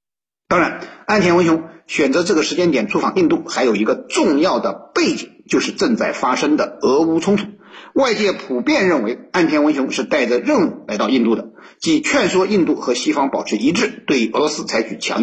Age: 50-69